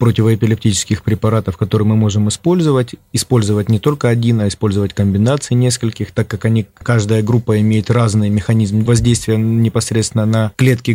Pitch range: 100-115 Hz